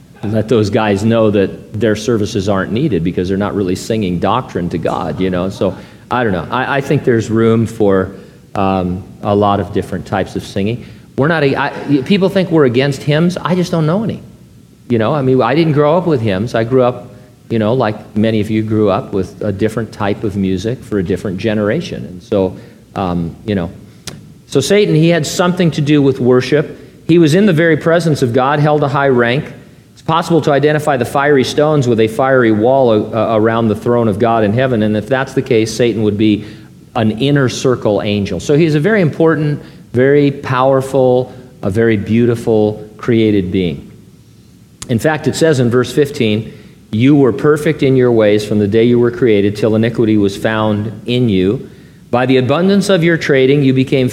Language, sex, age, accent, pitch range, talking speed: English, male, 40-59, American, 105-140 Hz, 205 wpm